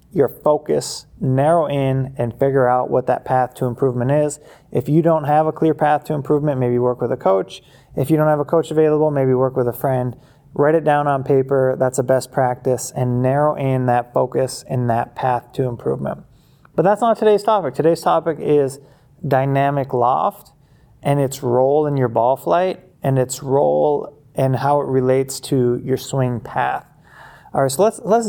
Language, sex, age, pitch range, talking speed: English, male, 20-39, 125-150 Hz, 195 wpm